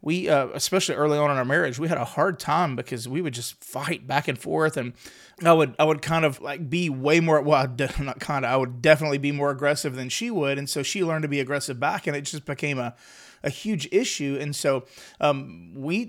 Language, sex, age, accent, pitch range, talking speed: English, male, 30-49, American, 145-185 Hz, 245 wpm